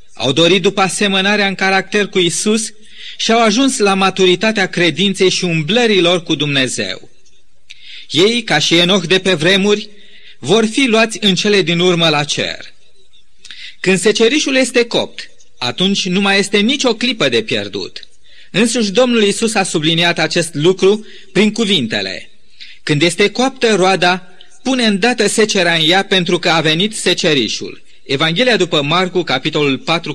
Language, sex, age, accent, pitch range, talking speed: Romanian, male, 30-49, native, 165-210 Hz, 145 wpm